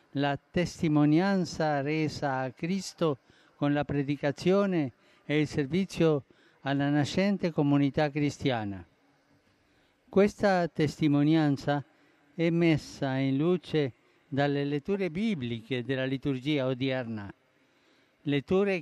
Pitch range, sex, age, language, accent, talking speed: 140-170 Hz, male, 50-69, Italian, native, 90 wpm